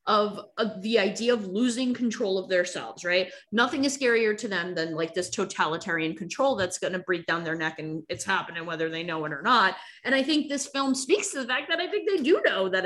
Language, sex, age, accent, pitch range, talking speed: English, female, 20-39, American, 180-255 Hz, 245 wpm